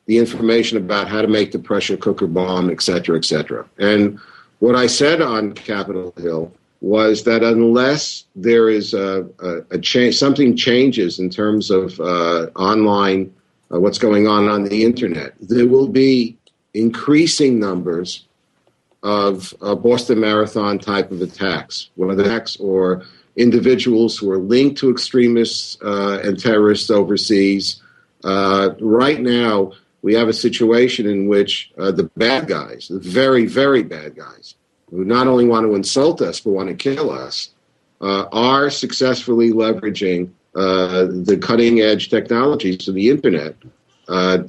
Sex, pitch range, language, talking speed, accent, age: male, 95-120 Hz, English, 150 wpm, American, 50-69